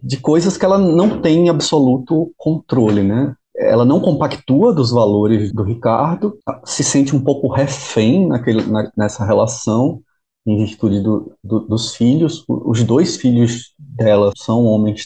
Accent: Brazilian